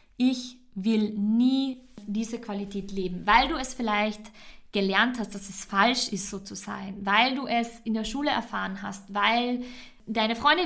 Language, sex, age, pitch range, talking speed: German, female, 20-39, 210-245 Hz, 170 wpm